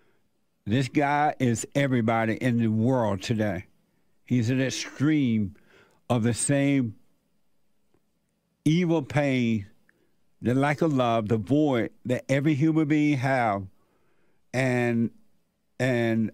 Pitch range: 115-145 Hz